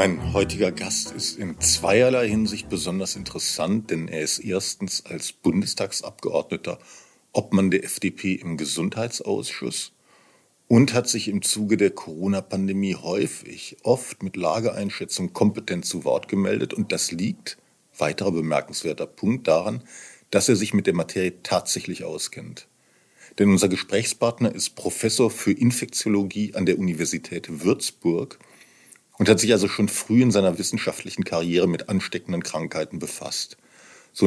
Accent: German